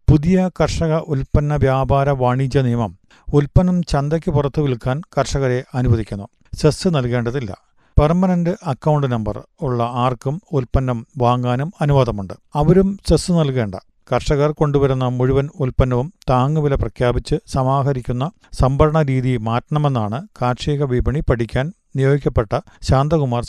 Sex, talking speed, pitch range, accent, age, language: male, 100 wpm, 120-150 Hz, native, 50-69, Malayalam